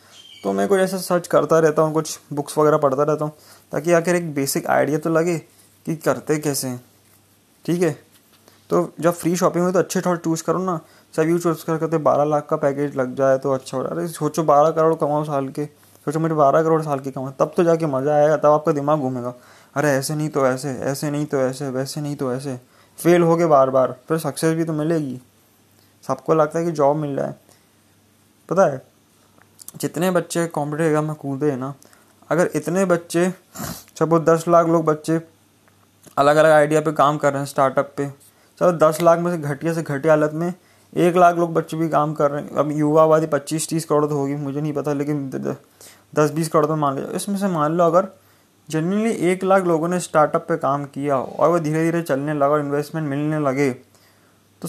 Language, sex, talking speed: Hindi, male, 215 wpm